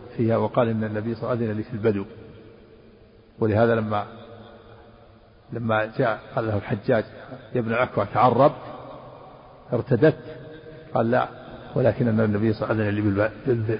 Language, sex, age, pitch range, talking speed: Arabic, male, 50-69, 110-125 Hz, 135 wpm